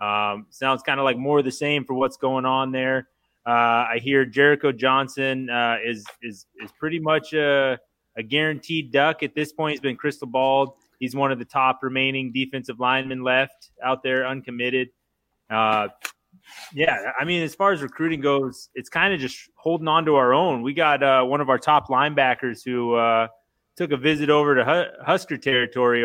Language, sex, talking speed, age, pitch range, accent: English, male, 190 wpm, 20-39, 125-150 Hz, American